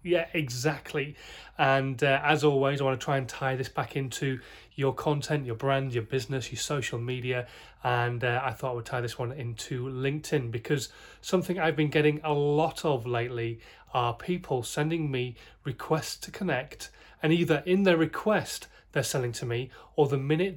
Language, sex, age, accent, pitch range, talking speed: English, male, 30-49, British, 125-155 Hz, 185 wpm